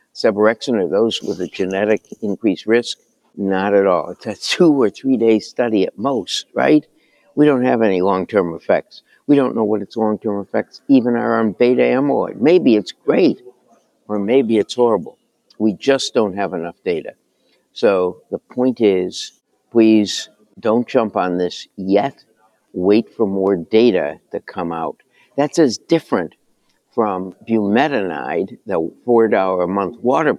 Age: 60-79